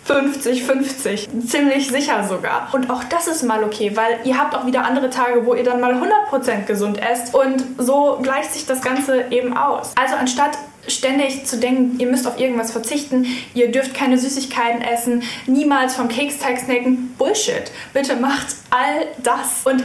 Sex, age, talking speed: female, 10-29, 175 wpm